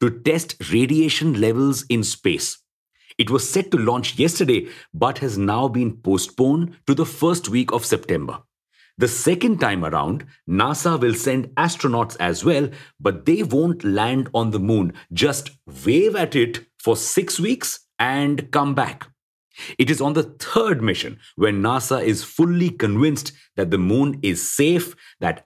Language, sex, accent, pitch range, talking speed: English, male, Indian, 110-150 Hz, 160 wpm